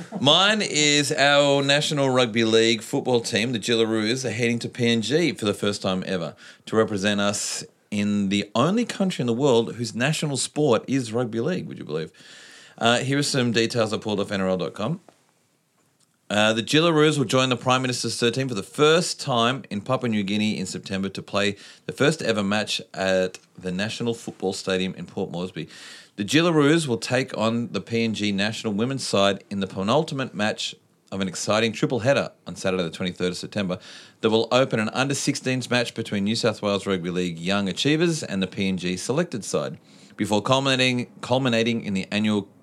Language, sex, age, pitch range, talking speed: English, male, 40-59, 100-130 Hz, 180 wpm